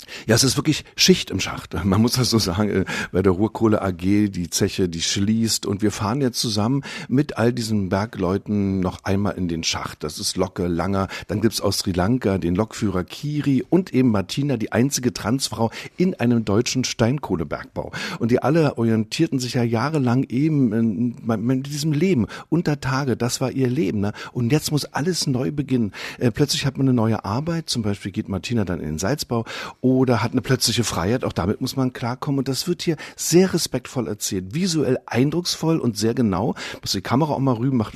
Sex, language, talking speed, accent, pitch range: male, German, 200 wpm, German, 105-135 Hz